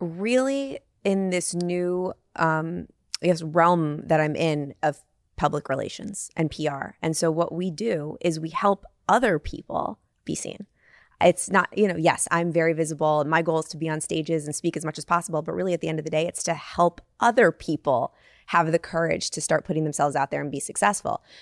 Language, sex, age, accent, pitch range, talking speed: English, female, 20-39, American, 160-200 Hz, 205 wpm